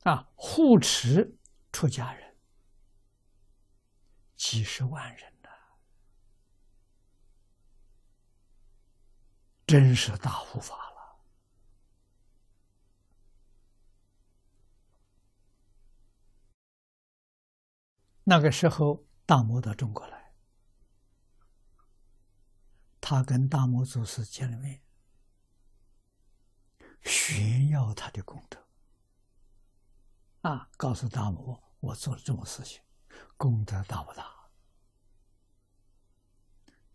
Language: Chinese